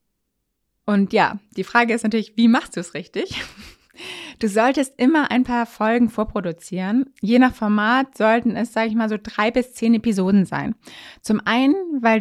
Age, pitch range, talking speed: 20-39, 210-255 Hz, 170 wpm